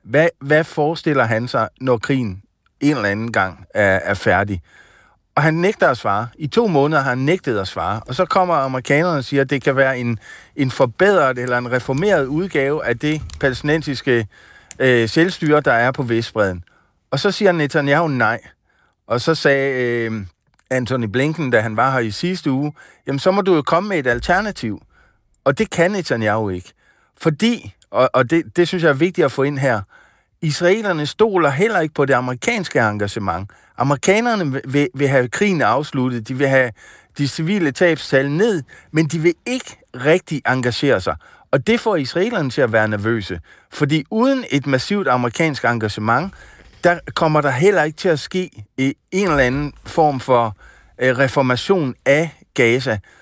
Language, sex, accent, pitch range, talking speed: Danish, male, native, 125-165 Hz, 175 wpm